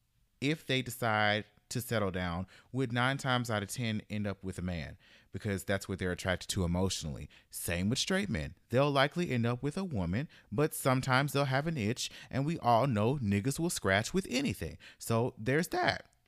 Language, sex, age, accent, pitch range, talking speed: English, male, 30-49, American, 105-140 Hz, 195 wpm